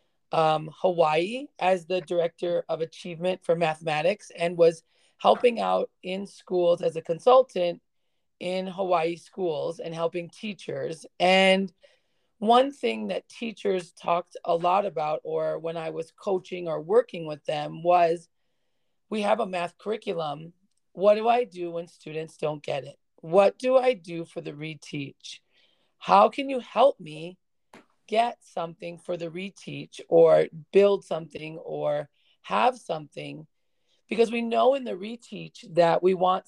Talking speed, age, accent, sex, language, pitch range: 145 wpm, 30-49, American, female, English, 165-200 Hz